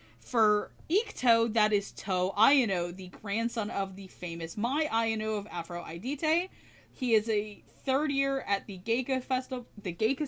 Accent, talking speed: American, 160 wpm